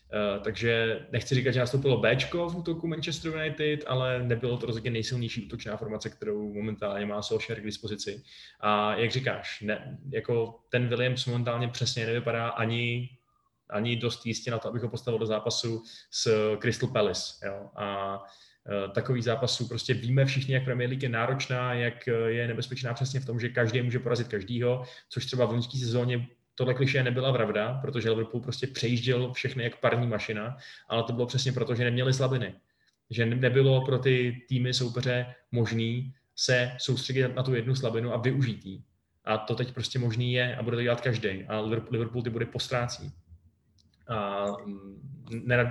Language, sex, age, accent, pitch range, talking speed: Czech, male, 20-39, native, 115-125 Hz, 170 wpm